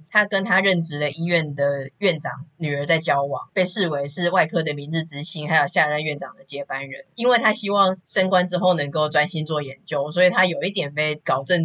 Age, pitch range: 20-39, 145-180 Hz